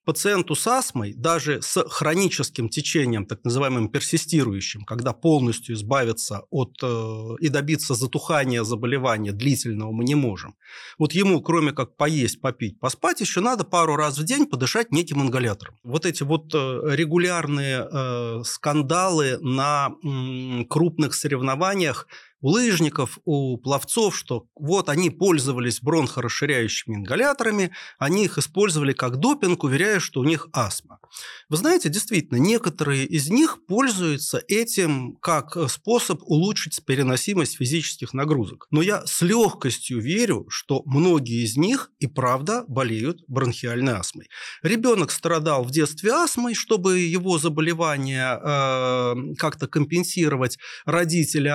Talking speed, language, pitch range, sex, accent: 125 wpm, Russian, 130-180 Hz, male, native